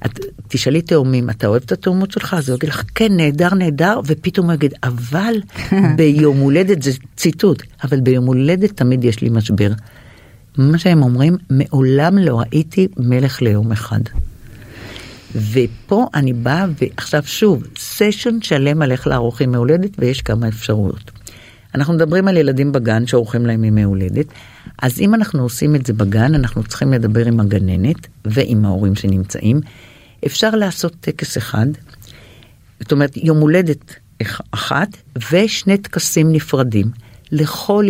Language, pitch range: Hebrew, 115-160 Hz